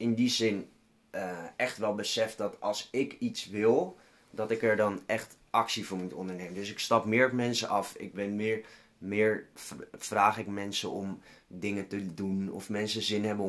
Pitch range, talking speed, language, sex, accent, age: 100-120 Hz, 190 wpm, Dutch, male, Dutch, 20-39